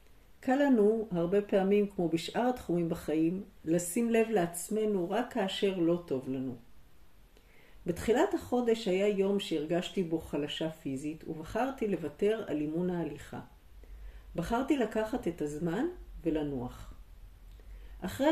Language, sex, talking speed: Hebrew, female, 115 wpm